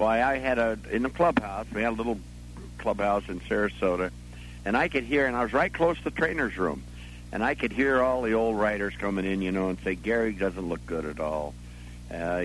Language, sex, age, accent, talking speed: English, male, 60-79, American, 230 wpm